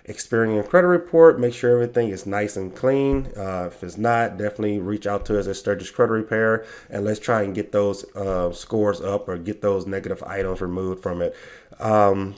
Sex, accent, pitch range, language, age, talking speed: male, American, 100-120 Hz, English, 30-49, 200 wpm